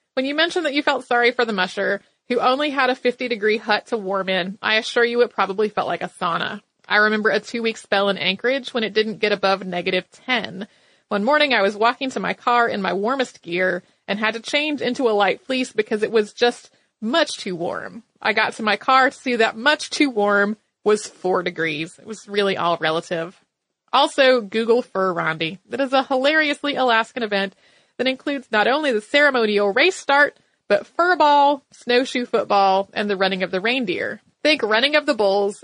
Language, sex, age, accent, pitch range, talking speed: English, female, 30-49, American, 200-260 Hz, 205 wpm